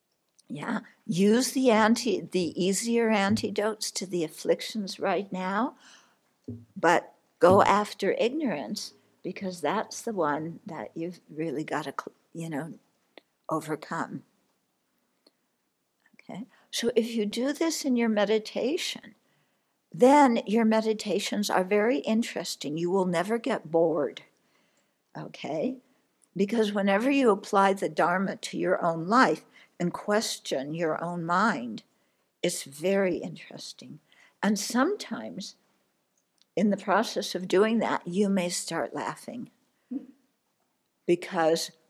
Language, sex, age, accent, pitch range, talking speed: English, female, 60-79, American, 180-235 Hz, 115 wpm